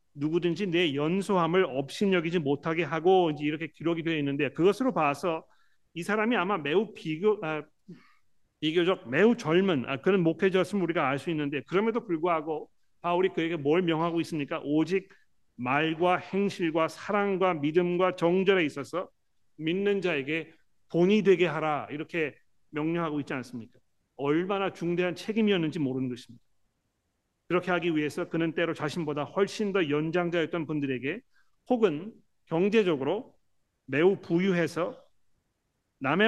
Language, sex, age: Korean, male, 40-59